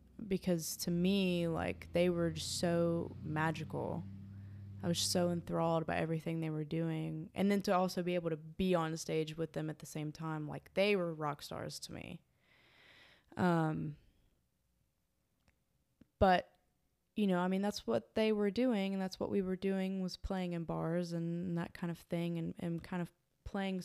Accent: American